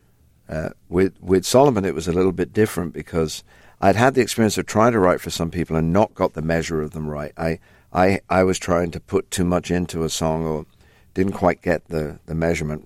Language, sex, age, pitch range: English, male, 50-69, 80-95 Hz